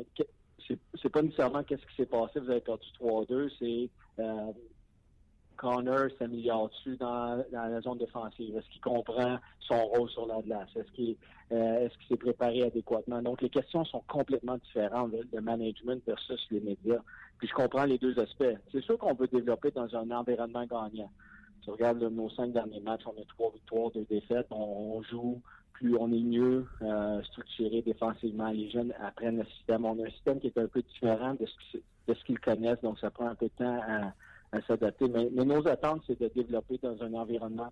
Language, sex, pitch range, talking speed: French, male, 110-125 Hz, 195 wpm